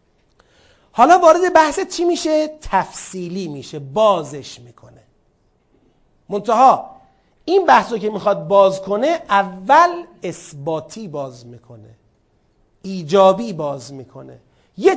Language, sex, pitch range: Persian, male, 175-245 Hz